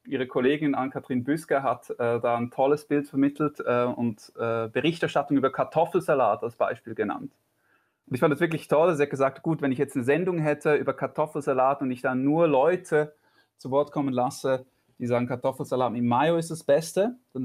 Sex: male